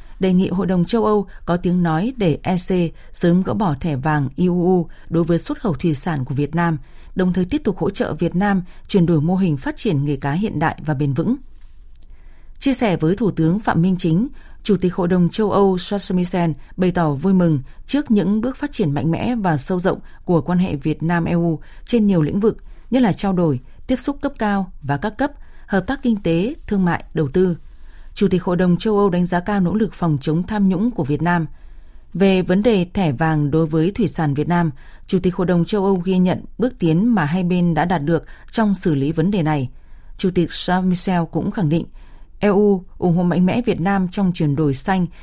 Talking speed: 230 wpm